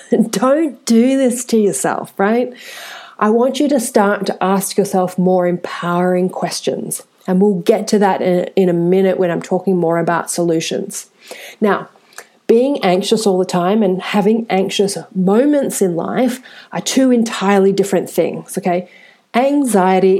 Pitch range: 180-225 Hz